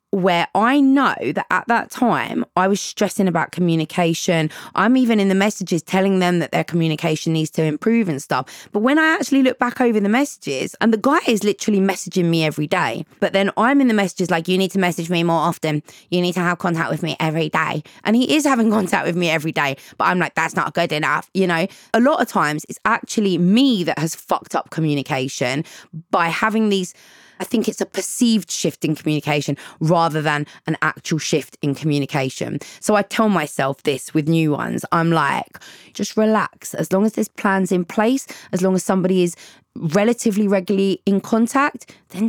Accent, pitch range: British, 160-215 Hz